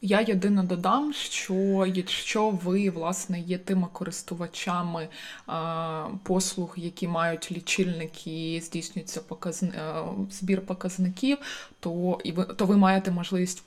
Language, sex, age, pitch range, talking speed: Ukrainian, female, 20-39, 180-205 Hz, 100 wpm